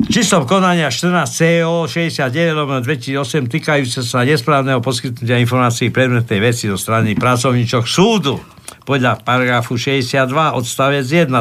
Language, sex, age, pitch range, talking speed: Slovak, male, 60-79, 125-155 Hz, 110 wpm